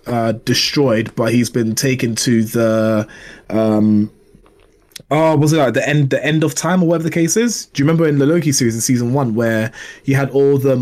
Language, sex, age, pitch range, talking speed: English, male, 20-39, 110-135 Hz, 215 wpm